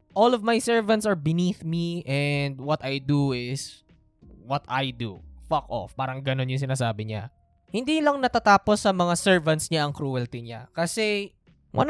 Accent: native